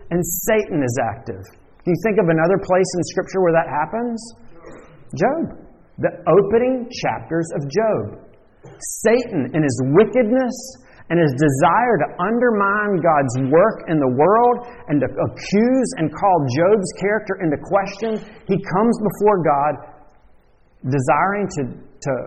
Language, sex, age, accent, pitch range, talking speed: English, male, 40-59, American, 155-210 Hz, 135 wpm